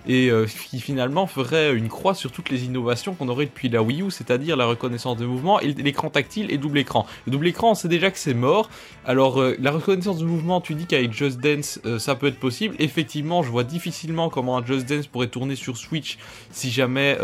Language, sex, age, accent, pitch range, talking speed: French, male, 20-39, French, 125-160 Hz, 235 wpm